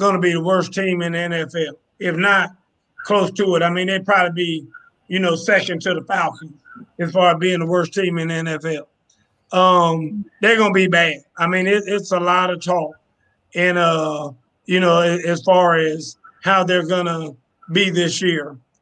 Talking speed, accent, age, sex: 190 wpm, American, 30-49, male